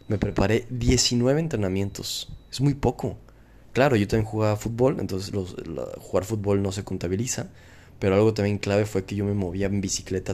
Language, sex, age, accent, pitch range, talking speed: Spanish, male, 20-39, Mexican, 100-135 Hz, 180 wpm